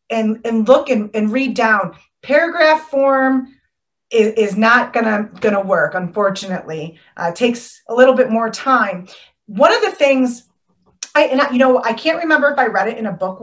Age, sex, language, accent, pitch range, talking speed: 30-49, female, English, American, 210-265 Hz, 190 wpm